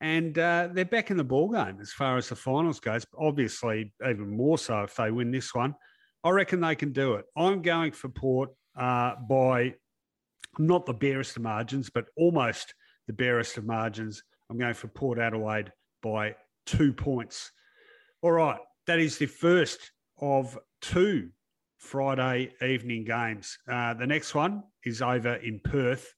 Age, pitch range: 50-69, 120-160 Hz